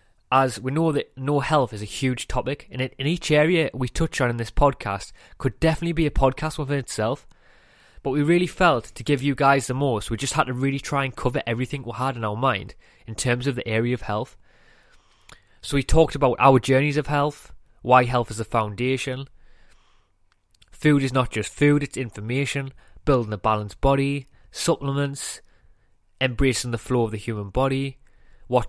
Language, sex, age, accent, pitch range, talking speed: English, male, 20-39, British, 115-140 Hz, 190 wpm